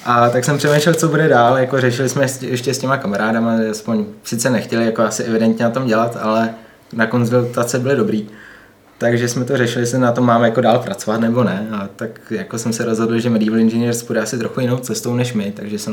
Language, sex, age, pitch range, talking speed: Czech, male, 20-39, 110-120 Hz, 220 wpm